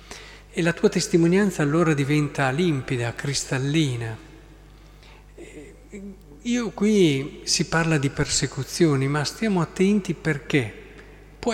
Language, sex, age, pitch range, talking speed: Italian, male, 40-59, 130-170 Hz, 100 wpm